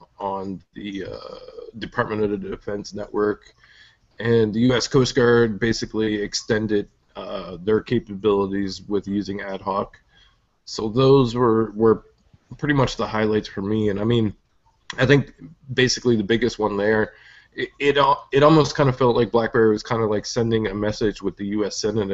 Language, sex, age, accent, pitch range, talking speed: English, male, 20-39, American, 100-120 Hz, 170 wpm